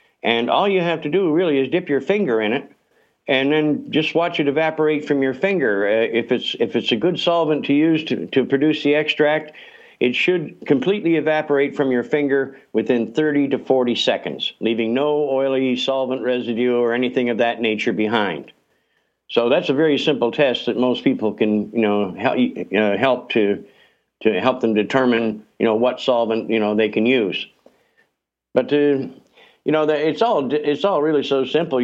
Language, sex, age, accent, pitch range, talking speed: English, male, 60-79, American, 125-155 Hz, 190 wpm